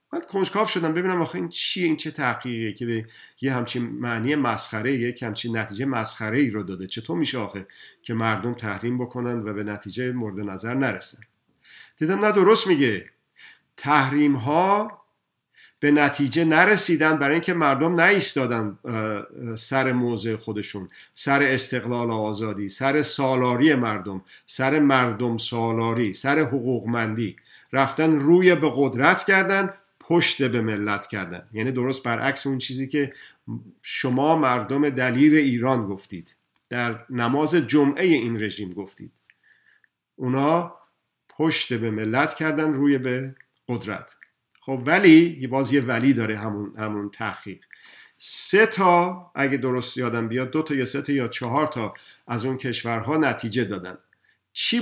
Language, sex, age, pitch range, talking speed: Persian, male, 50-69, 115-150 Hz, 140 wpm